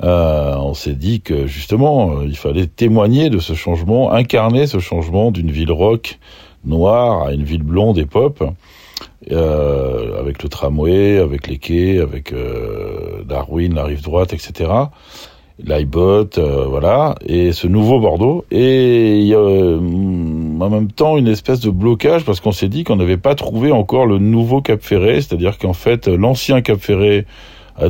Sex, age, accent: male, 50-69, French